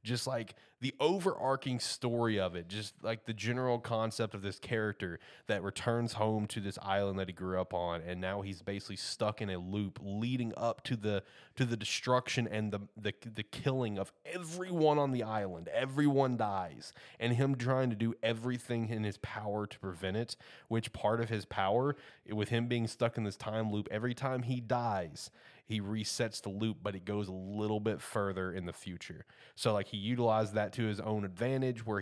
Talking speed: 200 wpm